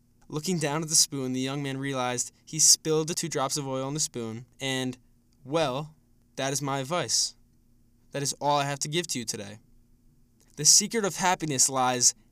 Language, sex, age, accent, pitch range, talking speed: English, male, 10-29, American, 120-165 Hz, 195 wpm